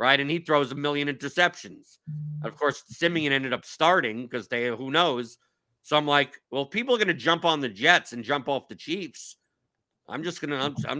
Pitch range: 140-180 Hz